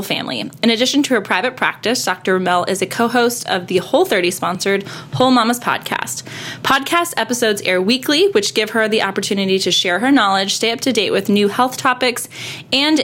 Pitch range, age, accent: 190-250 Hz, 20-39, American